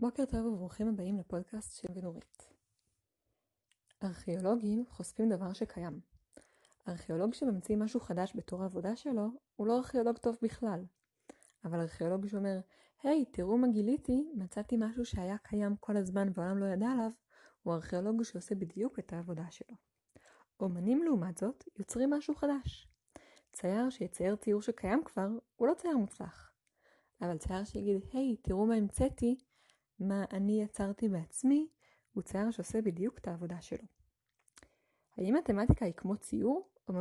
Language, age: Hebrew, 20-39